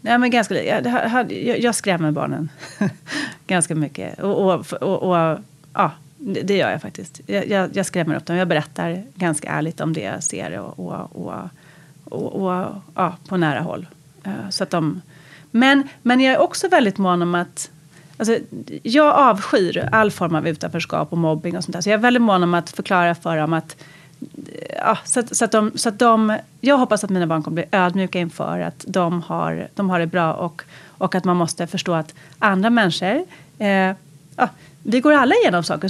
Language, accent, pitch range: Swedish, native, 165-230 Hz